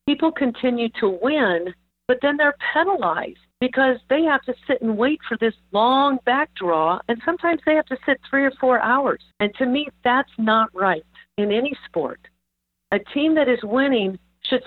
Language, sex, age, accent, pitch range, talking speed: English, female, 50-69, American, 195-255 Hz, 185 wpm